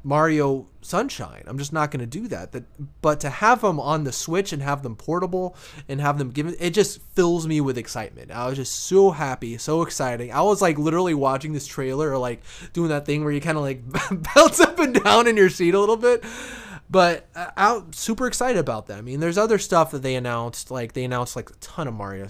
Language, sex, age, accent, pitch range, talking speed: English, male, 20-39, American, 125-170 Hz, 240 wpm